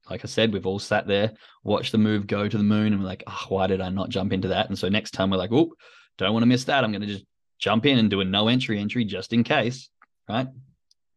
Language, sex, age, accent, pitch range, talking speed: English, male, 20-39, Australian, 100-115 Hz, 280 wpm